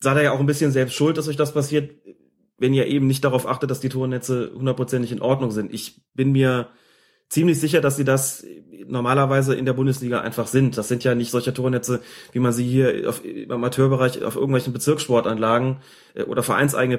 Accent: German